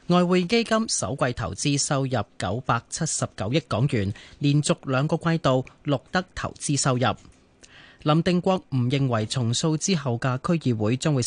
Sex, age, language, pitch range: male, 30-49, Chinese, 115-160 Hz